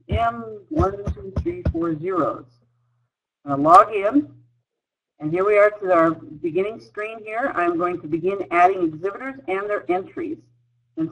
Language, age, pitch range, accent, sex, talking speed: English, 50-69, 140-195 Hz, American, female, 130 wpm